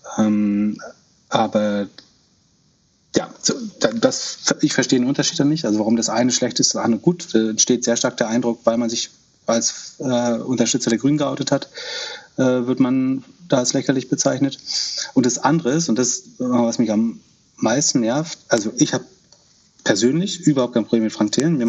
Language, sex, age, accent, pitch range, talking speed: German, male, 30-49, German, 115-145 Hz, 180 wpm